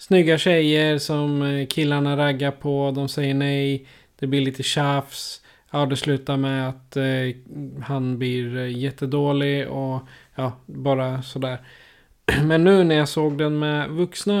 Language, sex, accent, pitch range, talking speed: Swedish, male, native, 130-150 Hz, 140 wpm